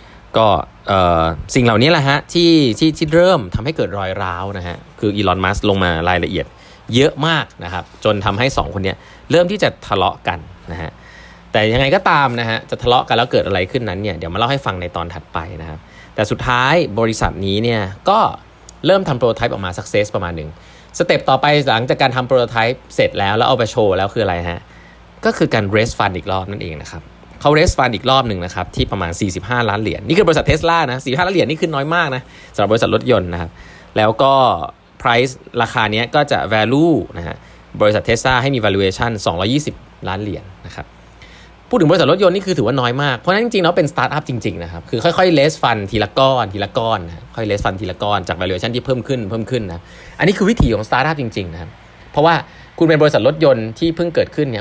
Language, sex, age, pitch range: Thai, male, 20-39, 95-140 Hz